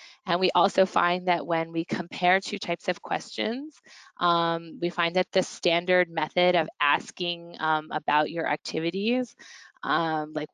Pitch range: 155-180 Hz